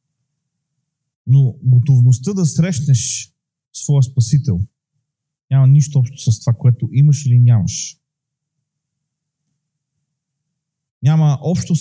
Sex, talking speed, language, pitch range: male, 85 wpm, Bulgarian, 130-150 Hz